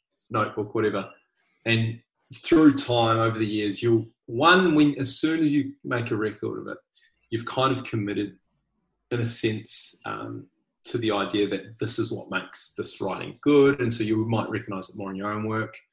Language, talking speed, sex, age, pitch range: English, 190 wpm, male, 20-39, 105-130 Hz